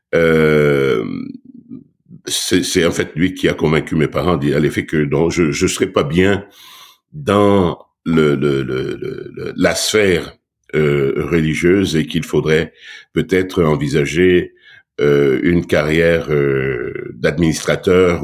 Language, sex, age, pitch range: French, male, 60-79, 75-90 Hz